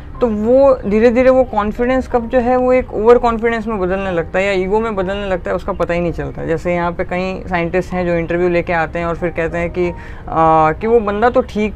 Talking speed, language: 255 wpm, Hindi